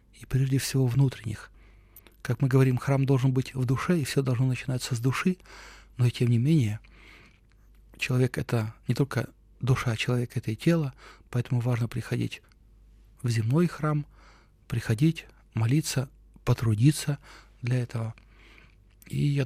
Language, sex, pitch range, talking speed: Russian, male, 110-135 Hz, 150 wpm